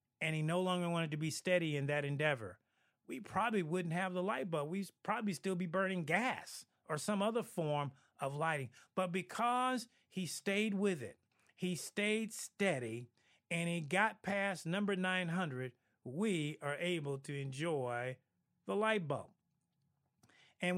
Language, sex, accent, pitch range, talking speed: English, male, American, 140-195 Hz, 155 wpm